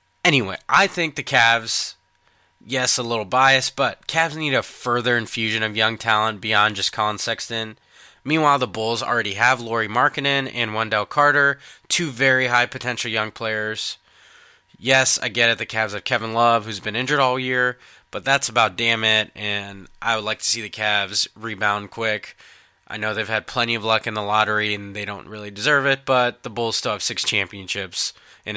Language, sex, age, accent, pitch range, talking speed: English, male, 20-39, American, 105-130 Hz, 190 wpm